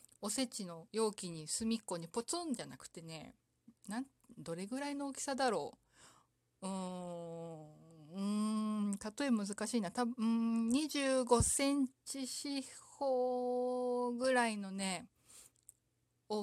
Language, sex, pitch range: Japanese, female, 185-240 Hz